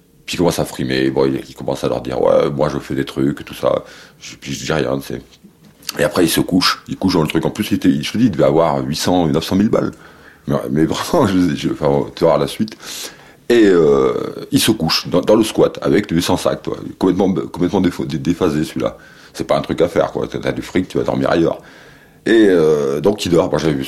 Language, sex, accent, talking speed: French, male, French, 245 wpm